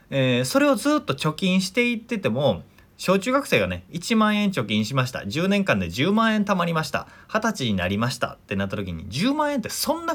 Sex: male